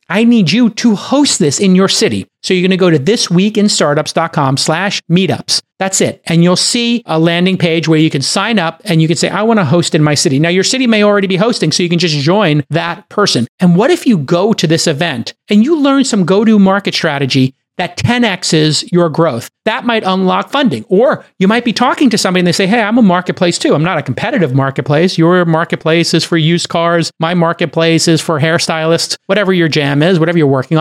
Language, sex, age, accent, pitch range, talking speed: English, male, 40-59, American, 155-200 Hz, 230 wpm